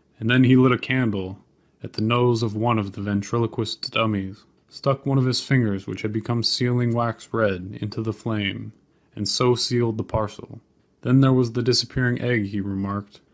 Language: English